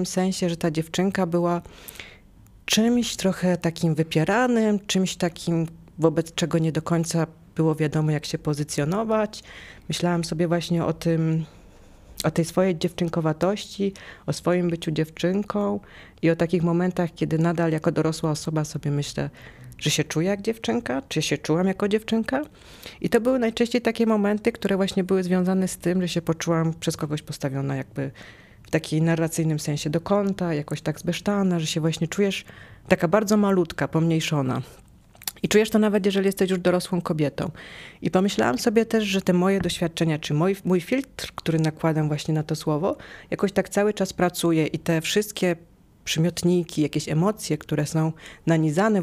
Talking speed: 160 wpm